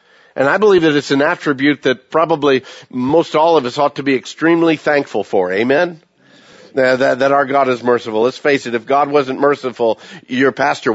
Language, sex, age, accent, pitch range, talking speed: English, male, 50-69, American, 125-170 Hz, 185 wpm